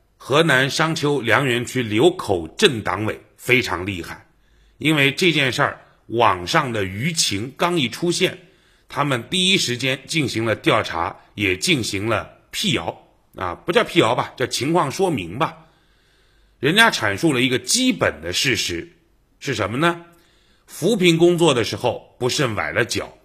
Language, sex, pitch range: Chinese, male, 115-170 Hz